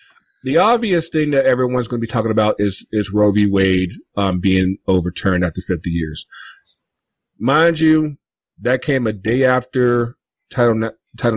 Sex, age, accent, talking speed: male, 40-59, American, 155 wpm